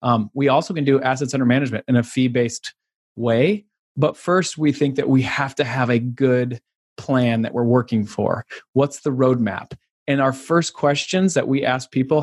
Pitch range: 115-140 Hz